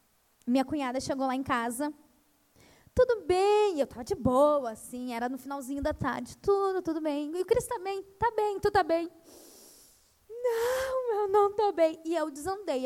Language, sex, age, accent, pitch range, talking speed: Portuguese, female, 10-29, Brazilian, 265-370 Hz, 180 wpm